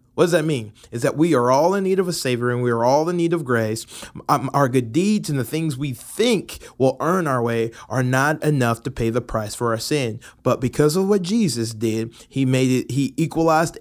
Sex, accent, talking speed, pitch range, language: male, American, 240 wpm, 120-155 Hz, English